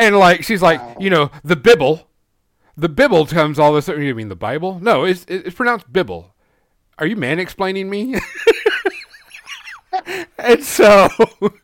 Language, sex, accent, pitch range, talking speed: English, male, American, 110-175 Hz, 150 wpm